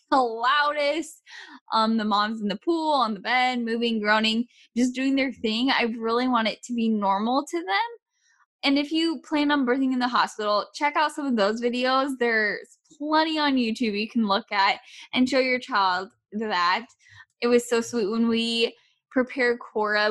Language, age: English, 10-29